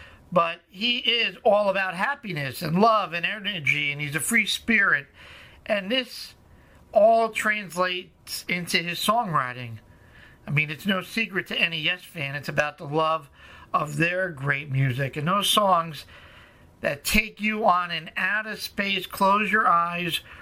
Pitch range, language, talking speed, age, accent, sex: 155-200 Hz, English, 155 wpm, 50-69, American, male